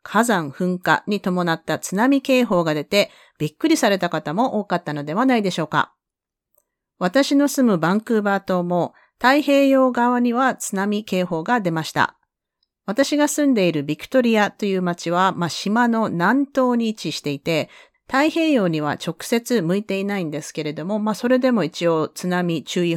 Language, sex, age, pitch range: Japanese, female, 40-59, 160-245 Hz